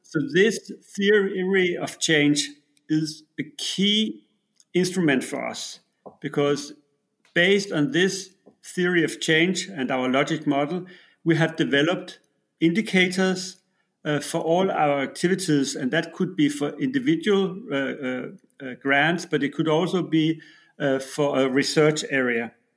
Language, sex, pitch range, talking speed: English, male, 145-185 Hz, 135 wpm